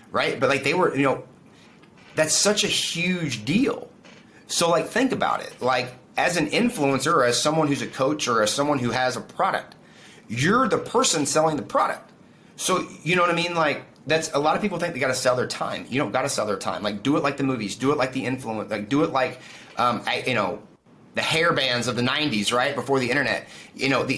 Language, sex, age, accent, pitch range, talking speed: English, male, 30-49, American, 110-150 Hz, 240 wpm